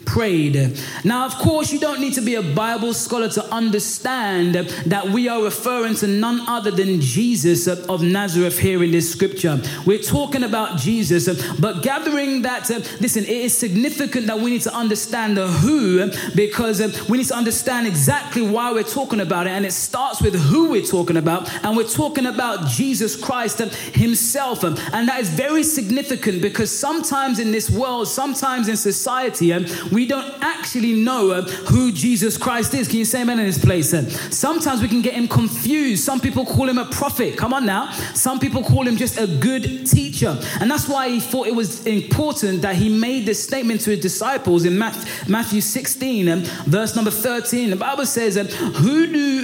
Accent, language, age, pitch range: British, English, 20-39, 190-250 Hz